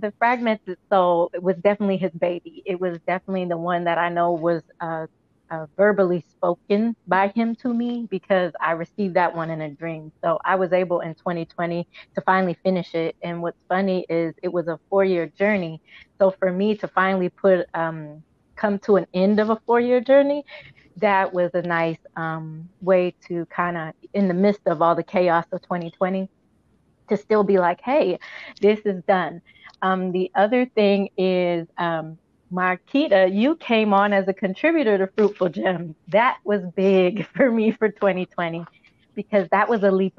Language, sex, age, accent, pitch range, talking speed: English, female, 20-39, American, 175-210 Hz, 180 wpm